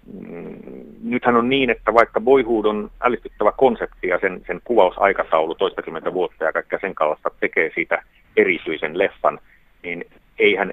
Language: Finnish